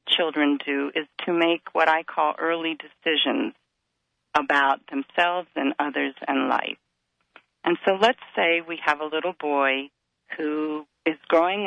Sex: female